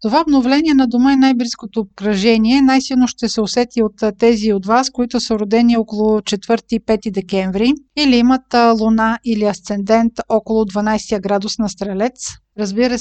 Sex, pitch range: female, 215-250 Hz